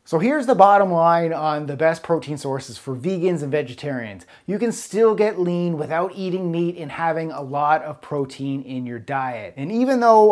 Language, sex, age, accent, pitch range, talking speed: English, male, 30-49, American, 145-180 Hz, 200 wpm